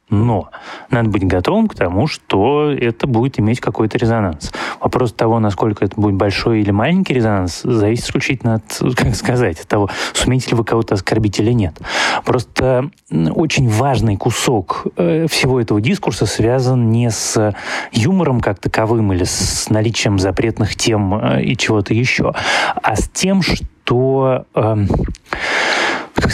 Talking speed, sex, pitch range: 135 wpm, male, 100-125 Hz